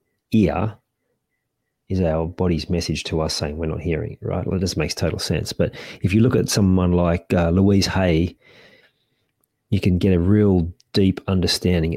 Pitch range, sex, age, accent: 85-105 Hz, male, 40-59, Australian